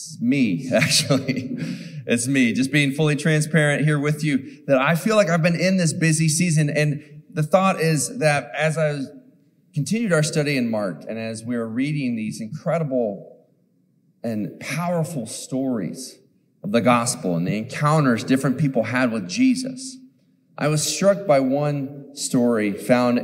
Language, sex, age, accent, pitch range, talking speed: English, male, 30-49, American, 120-165 Hz, 160 wpm